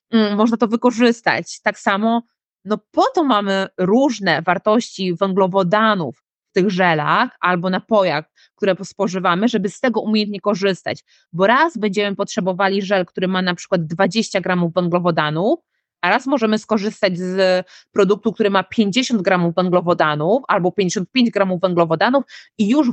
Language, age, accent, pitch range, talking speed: Polish, 20-39, native, 195-245 Hz, 140 wpm